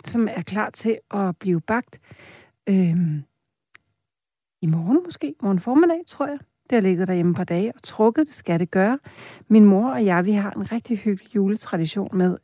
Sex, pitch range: female, 180-225 Hz